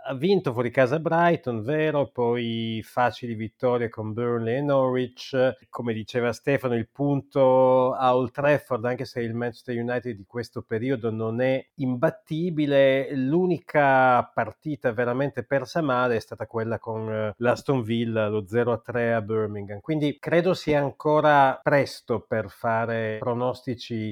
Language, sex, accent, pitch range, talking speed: Italian, male, native, 115-140 Hz, 135 wpm